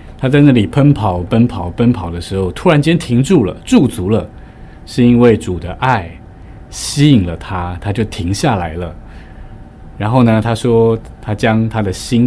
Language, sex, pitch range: Chinese, male, 90-115 Hz